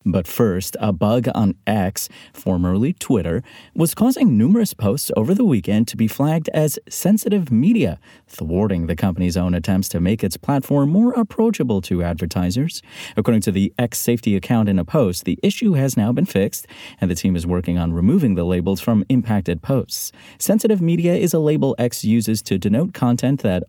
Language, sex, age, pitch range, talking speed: English, male, 30-49, 95-140 Hz, 180 wpm